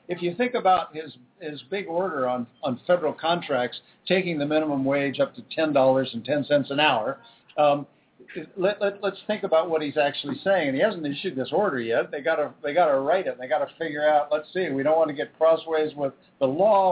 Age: 60-79